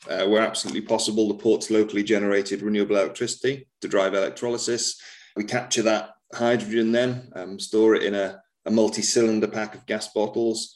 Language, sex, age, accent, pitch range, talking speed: English, male, 30-49, British, 100-115 Hz, 160 wpm